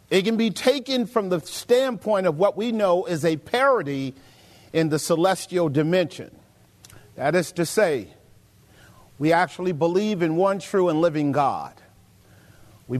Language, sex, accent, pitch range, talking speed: English, male, American, 155-210 Hz, 150 wpm